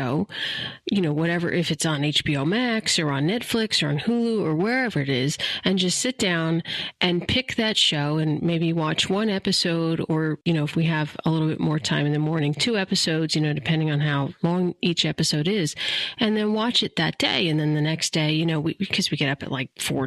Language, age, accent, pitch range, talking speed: English, 40-59, American, 150-190 Hz, 235 wpm